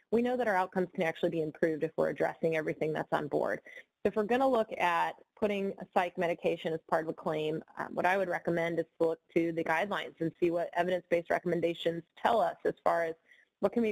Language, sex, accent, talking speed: English, female, American, 235 wpm